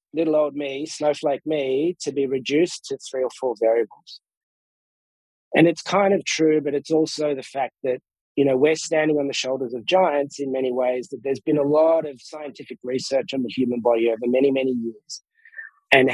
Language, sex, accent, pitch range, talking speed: English, male, Australian, 130-155 Hz, 195 wpm